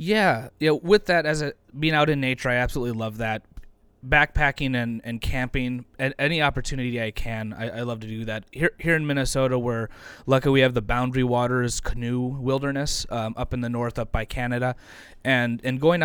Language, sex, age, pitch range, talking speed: English, male, 20-39, 110-135 Hz, 200 wpm